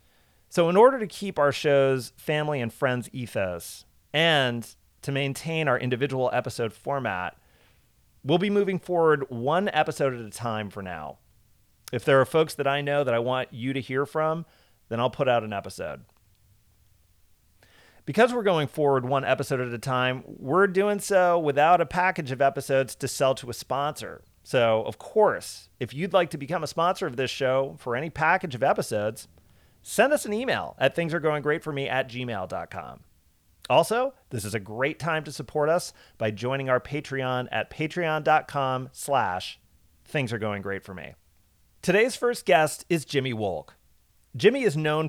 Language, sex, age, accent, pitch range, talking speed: English, male, 40-59, American, 115-155 Hz, 160 wpm